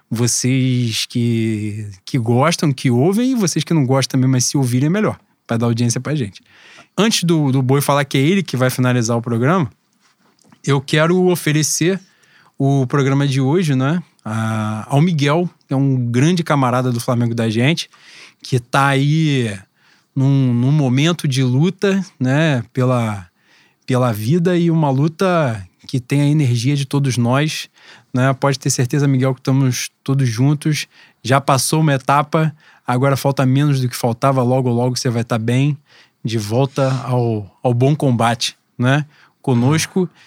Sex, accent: male, Brazilian